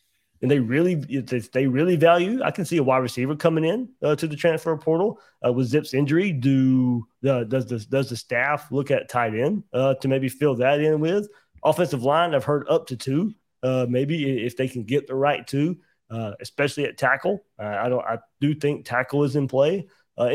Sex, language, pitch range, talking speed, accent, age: male, English, 125-150 Hz, 220 wpm, American, 30-49